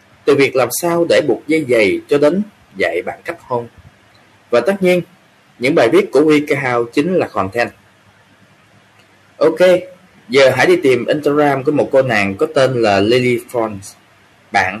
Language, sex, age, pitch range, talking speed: Vietnamese, male, 20-39, 115-170 Hz, 165 wpm